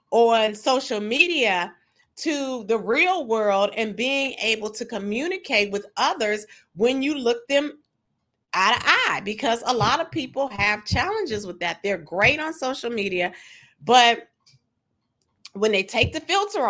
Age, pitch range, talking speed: 30-49, 195-255 Hz, 145 wpm